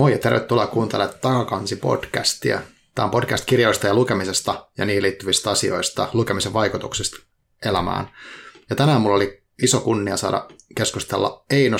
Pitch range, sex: 100-120 Hz, male